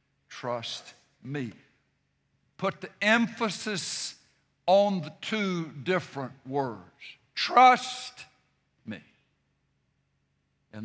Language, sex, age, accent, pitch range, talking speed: English, male, 60-79, American, 155-230 Hz, 70 wpm